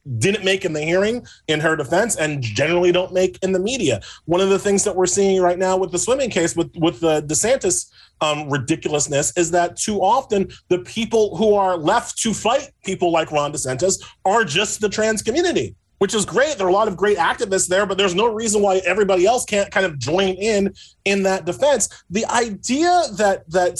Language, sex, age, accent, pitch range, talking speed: English, male, 30-49, American, 175-215 Hz, 210 wpm